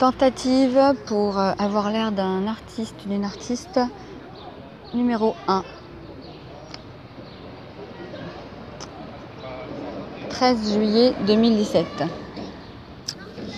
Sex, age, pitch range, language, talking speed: female, 30-49, 190-230 Hz, French, 55 wpm